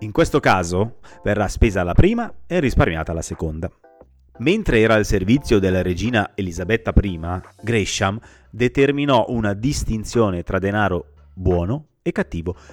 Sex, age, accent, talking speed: male, 30-49, native, 130 wpm